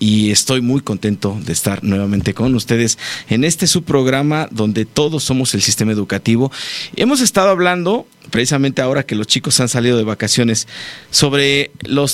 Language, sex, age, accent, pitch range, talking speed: Spanish, male, 50-69, Mexican, 105-130 Hz, 165 wpm